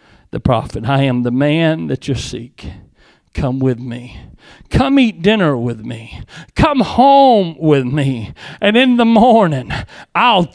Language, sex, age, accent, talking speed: English, male, 40-59, American, 150 wpm